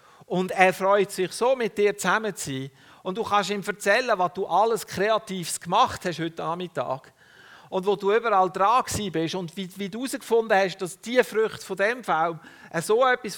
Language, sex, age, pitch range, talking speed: German, male, 50-69, 150-215 Hz, 195 wpm